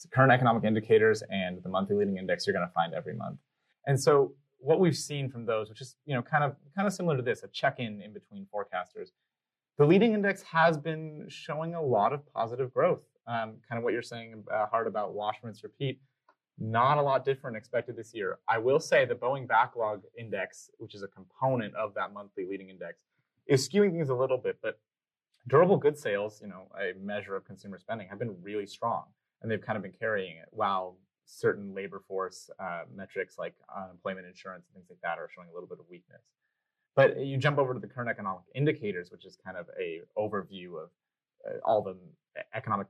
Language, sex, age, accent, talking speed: English, male, 30-49, American, 210 wpm